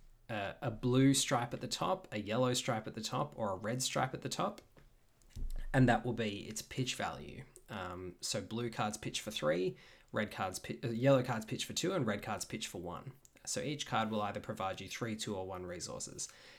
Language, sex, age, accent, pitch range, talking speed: English, male, 20-39, Australian, 105-125 Hz, 220 wpm